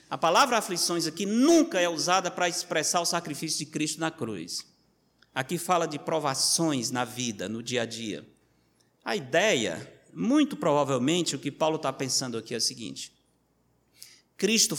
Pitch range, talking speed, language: 150-220 Hz, 160 wpm, Portuguese